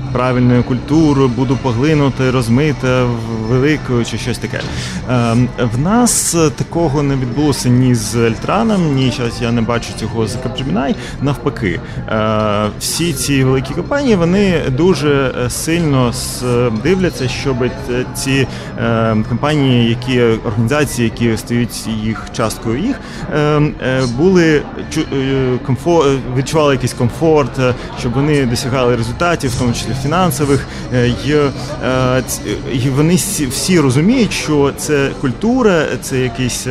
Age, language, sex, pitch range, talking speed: 30-49, Ukrainian, male, 120-150 Hz, 110 wpm